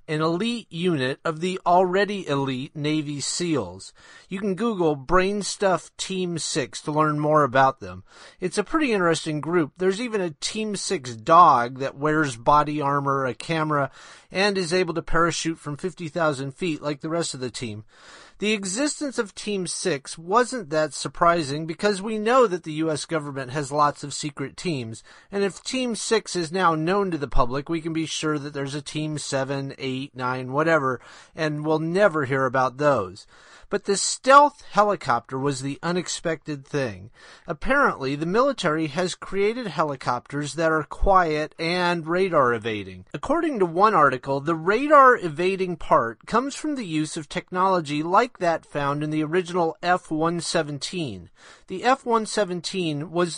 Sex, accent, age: male, American, 30-49